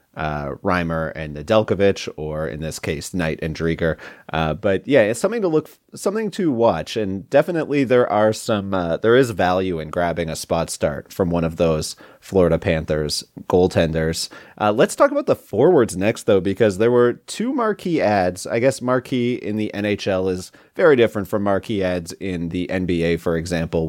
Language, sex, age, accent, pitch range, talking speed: English, male, 30-49, American, 90-120 Hz, 185 wpm